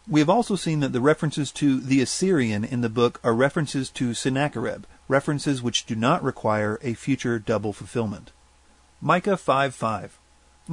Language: English